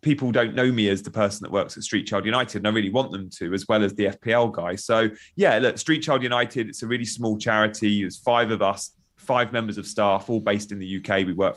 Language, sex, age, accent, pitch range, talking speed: English, male, 30-49, British, 105-130 Hz, 265 wpm